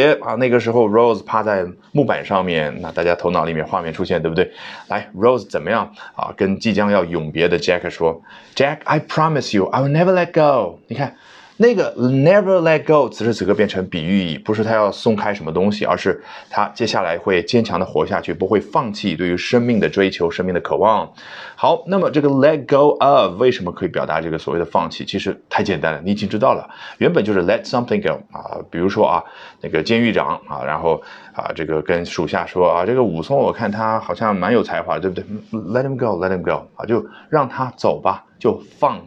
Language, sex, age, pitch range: Chinese, male, 30-49, 95-150 Hz